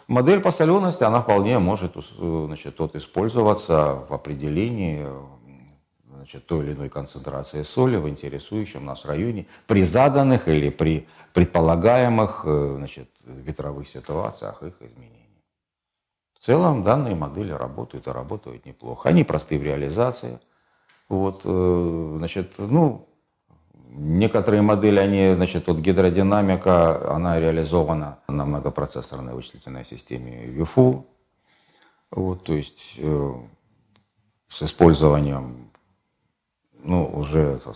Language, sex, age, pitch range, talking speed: Russian, male, 40-59, 75-100 Hz, 110 wpm